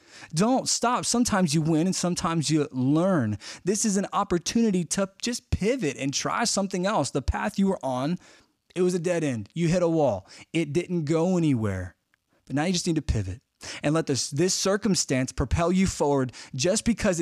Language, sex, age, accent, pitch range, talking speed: English, male, 20-39, American, 130-180 Hz, 190 wpm